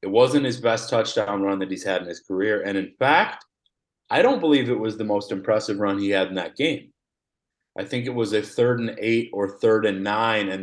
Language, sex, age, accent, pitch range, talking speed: English, male, 30-49, American, 105-125 Hz, 235 wpm